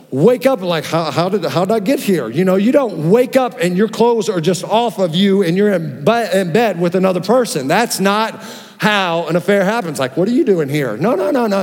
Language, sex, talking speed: English, male, 260 wpm